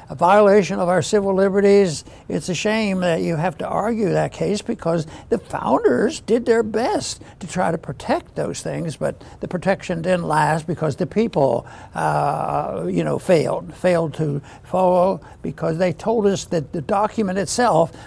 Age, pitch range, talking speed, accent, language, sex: 60-79, 160-200 Hz, 170 wpm, American, English, male